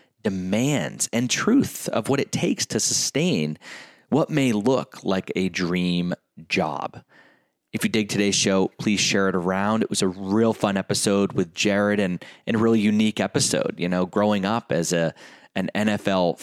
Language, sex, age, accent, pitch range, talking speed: English, male, 30-49, American, 90-105 Hz, 170 wpm